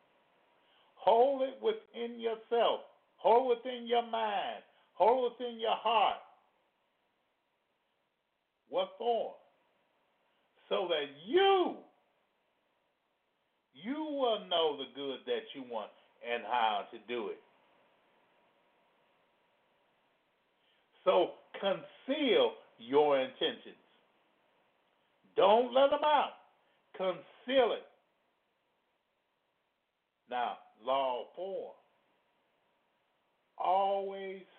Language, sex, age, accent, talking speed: English, male, 50-69, American, 80 wpm